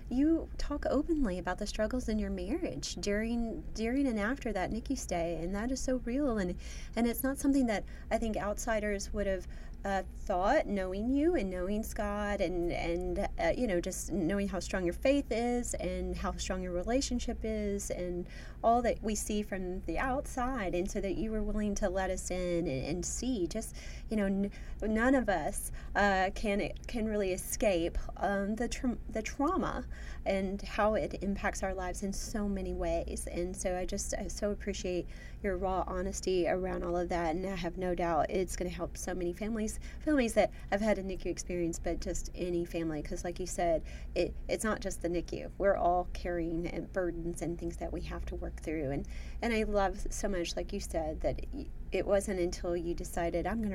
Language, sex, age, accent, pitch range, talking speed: English, female, 30-49, American, 175-220 Hz, 205 wpm